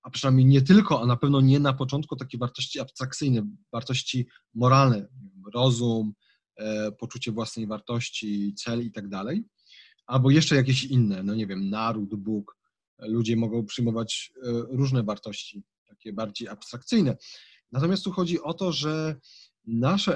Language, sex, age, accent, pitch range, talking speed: Polish, male, 30-49, native, 120-150 Hz, 140 wpm